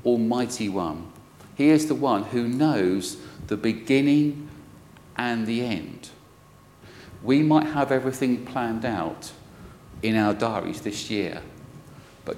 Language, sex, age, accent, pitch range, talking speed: English, male, 40-59, British, 100-130 Hz, 120 wpm